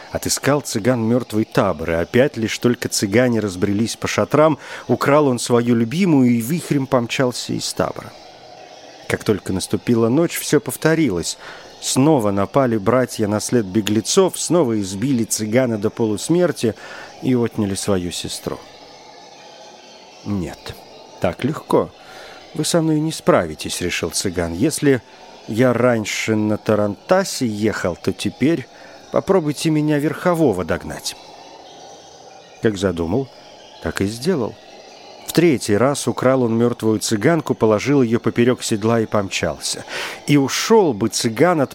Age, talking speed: 50-69, 125 wpm